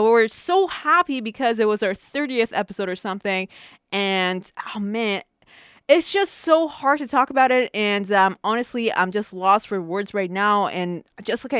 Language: English